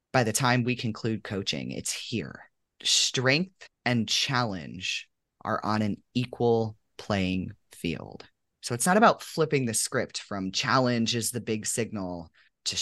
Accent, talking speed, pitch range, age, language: American, 145 wpm, 100-130 Hz, 30-49, English